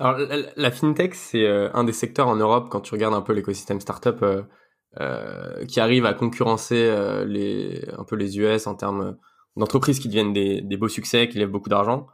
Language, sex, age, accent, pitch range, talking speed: French, male, 20-39, French, 100-115 Hz, 215 wpm